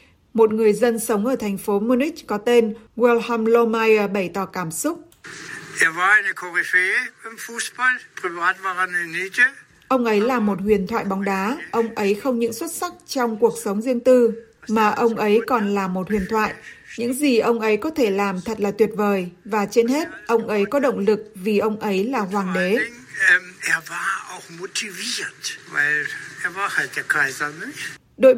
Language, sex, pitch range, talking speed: Vietnamese, female, 210-255 Hz, 145 wpm